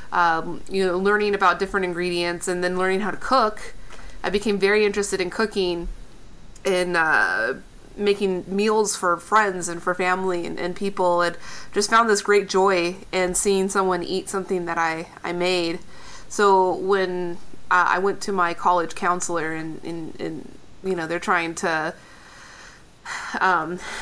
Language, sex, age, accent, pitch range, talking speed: English, female, 30-49, American, 175-195 Hz, 155 wpm